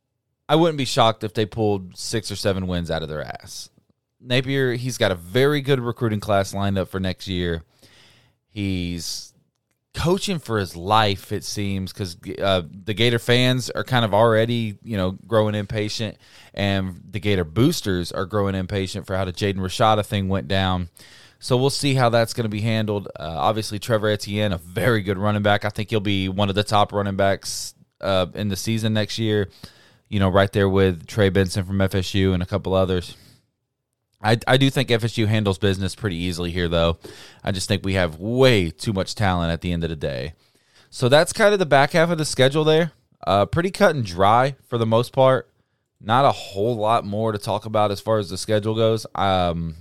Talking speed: 205 wpm